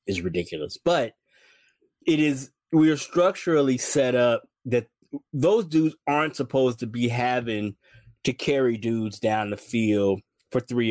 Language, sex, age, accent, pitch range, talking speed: English, male, 20-39, American, 115-155 Hz, 145 wpm